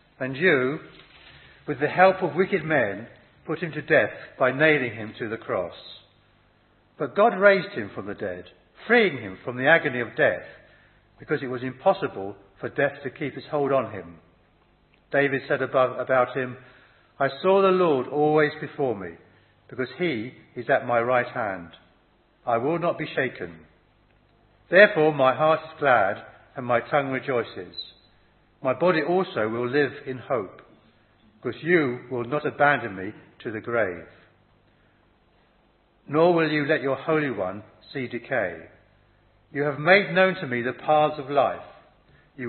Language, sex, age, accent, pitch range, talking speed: English, male, 60-79, British, 110-155 Hz, 160 wpm